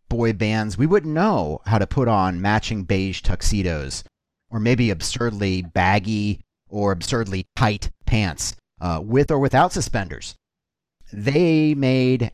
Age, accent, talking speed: 40-59, American, 130 wpm